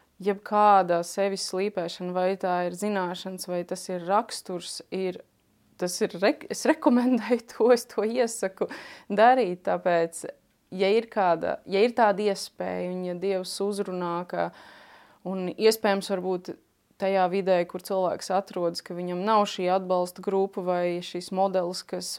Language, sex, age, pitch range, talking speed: Russian, female, 20-39, 185-215 Hz, 135 wpm